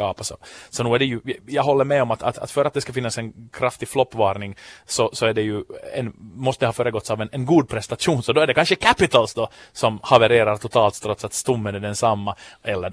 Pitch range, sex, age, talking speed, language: 110-145 Hz, male, 30-49, 240 wpm, Swedish